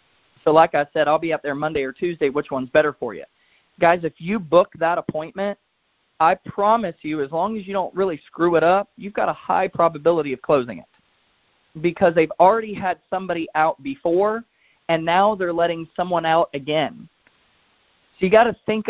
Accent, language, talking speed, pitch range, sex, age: American, English, 195 wpm, 145-185 Hz, male, 40-59